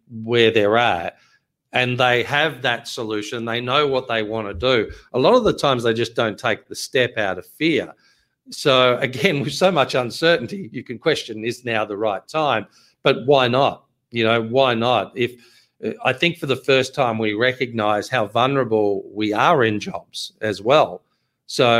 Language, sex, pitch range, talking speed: English, male, 110-130 Hz, 185 wpm